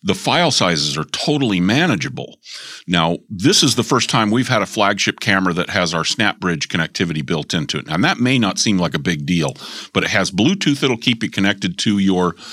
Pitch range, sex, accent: 90-115 Hz, male, American